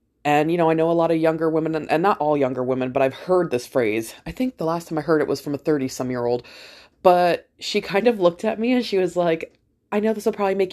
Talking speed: 275 wpm